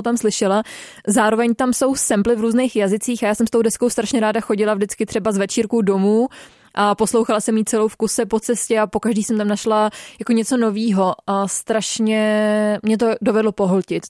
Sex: female